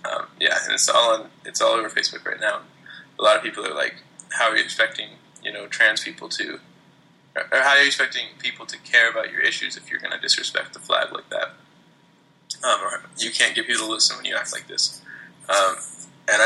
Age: 20-39